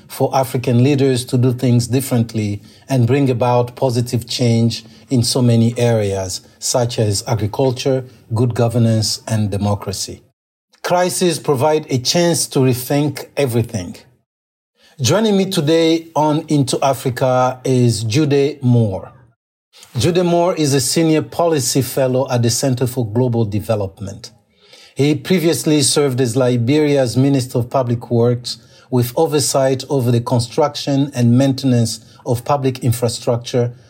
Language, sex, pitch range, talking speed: English, male, 120-145 Hz, 125 wpm